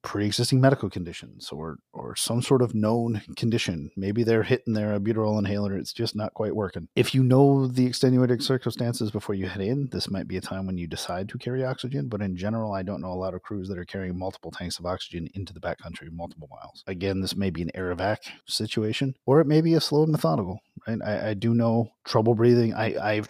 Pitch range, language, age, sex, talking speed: 95-115 Hz, English, 30-49, male, 225 wpm